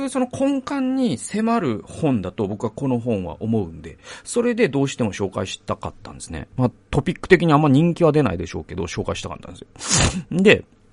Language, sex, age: Japanese, male, 40-59